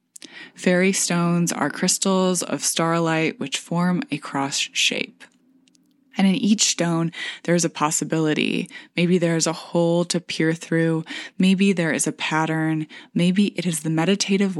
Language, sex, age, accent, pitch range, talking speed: English, female, 20-39, American, 155-200 Hz, 150 wpm